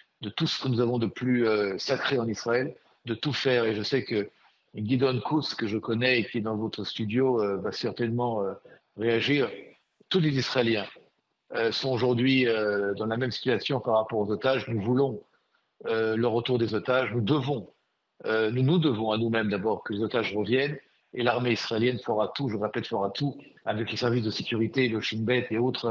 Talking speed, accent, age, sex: 205 wpm, French, 50-69, male